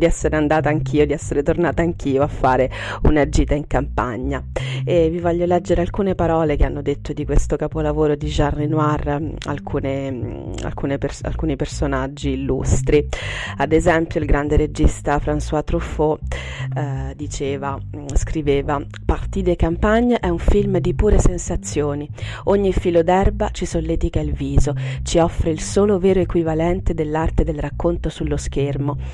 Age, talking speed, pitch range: 30-49, 150 wpm, 135-170 Hz